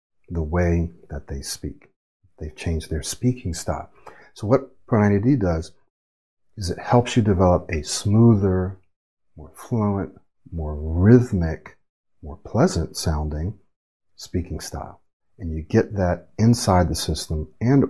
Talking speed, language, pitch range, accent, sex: 130 wpm, English, 80-100 Hz, American, male